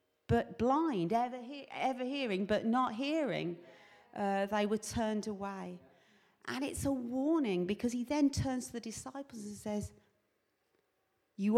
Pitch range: 185-275 Hz